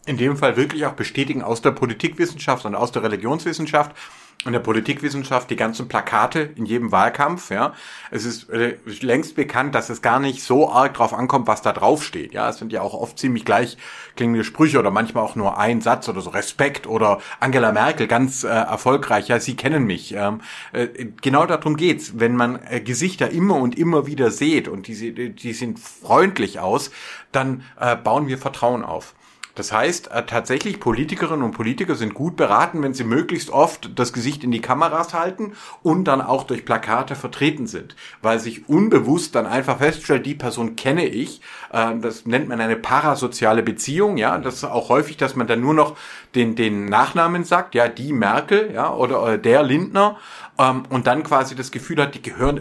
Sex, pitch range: male, 115-145 Hz